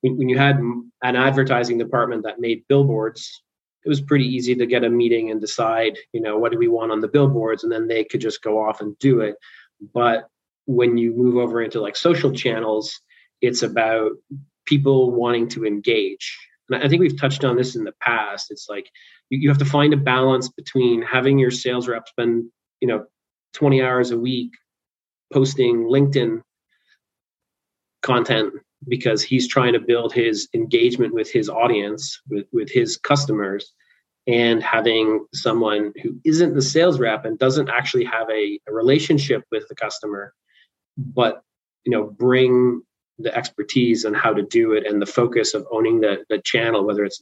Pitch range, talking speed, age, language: 115-135 Hz, 175 wpm, 30-49, English